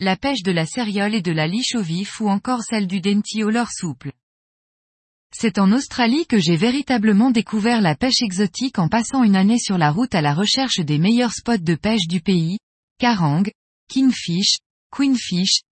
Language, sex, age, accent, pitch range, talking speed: French, female, 20-39, French, 185-240 Hz, 185 wpm